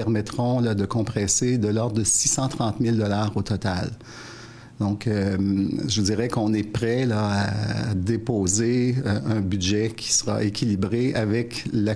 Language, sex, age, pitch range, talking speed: French, male, 50-69, 105-125 Hz, 140 wpm